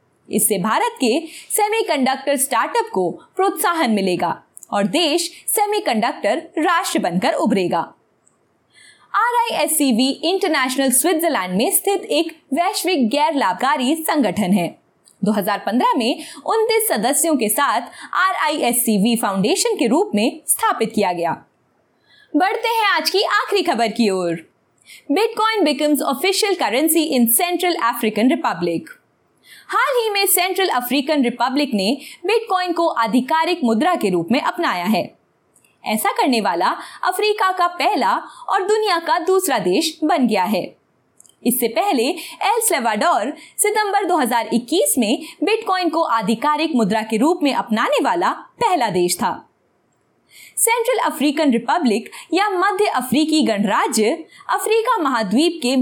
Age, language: 20-39, Hindi